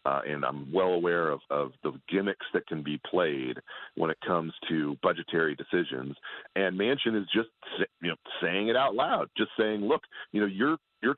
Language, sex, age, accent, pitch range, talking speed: English, male, 40-59, American, 90-110 Hz, 195 wpm